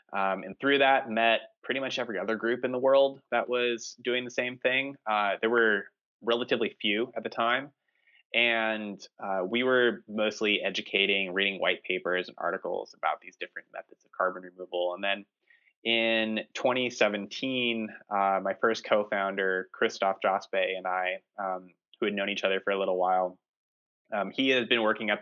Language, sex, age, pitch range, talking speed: English, male, 20-39, 95-120 Hz, 175 wpm